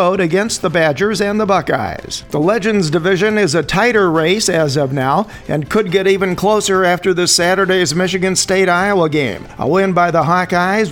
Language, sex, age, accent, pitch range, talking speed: English, male, 50-69, American, 165-195 Hz, 175 wpm